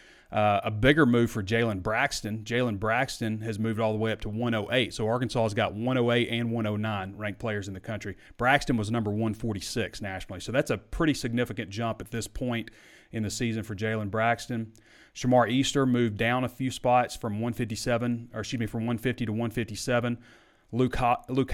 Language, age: English, 30-49